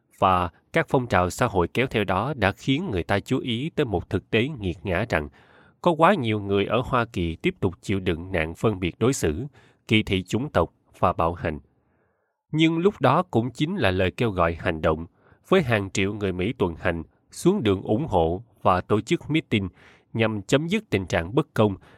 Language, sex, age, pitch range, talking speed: Vietnamese, male, 20-39, 90-130 Hz, 215 wpm